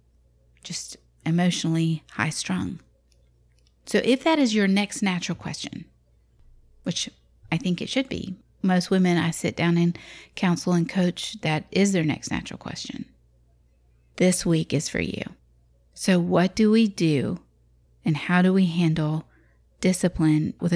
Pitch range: 155-195 Hz